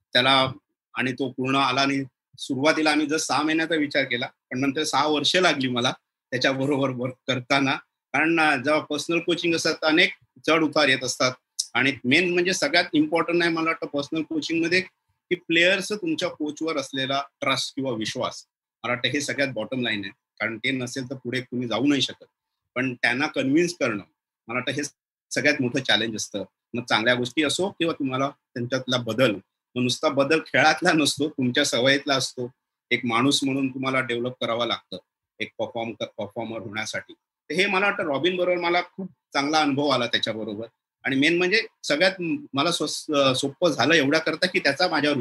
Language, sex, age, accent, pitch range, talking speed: Marathi, male, 30-49, native, 130-160 Hz, 165 wpm